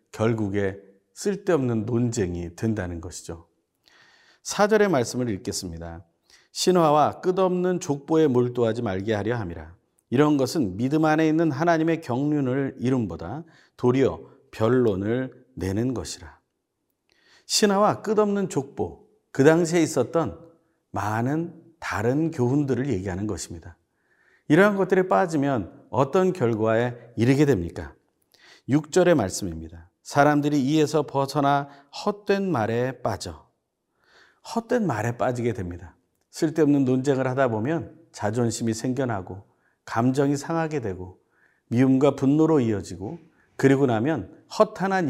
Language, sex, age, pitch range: Korean, male, 40-59, 105-155 Hz